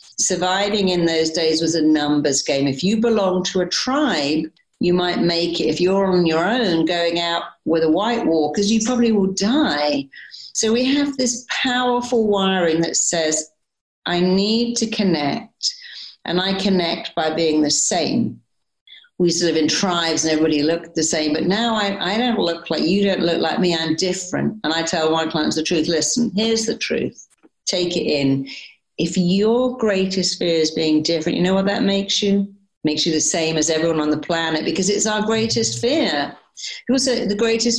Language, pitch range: English, 160-215 Hz